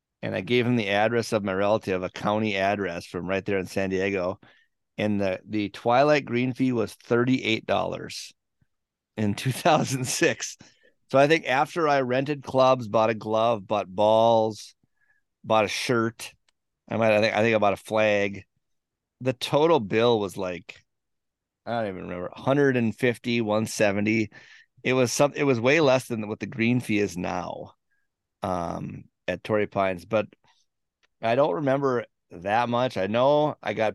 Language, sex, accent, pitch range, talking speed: English, male, American, 100-125 Hz, 165 wpm